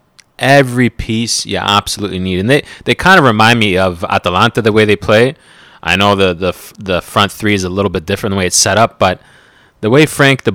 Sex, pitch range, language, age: male, 90-110 Hz, English, 30-49